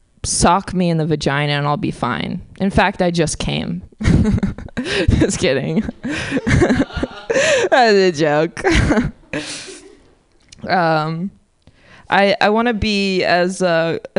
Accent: American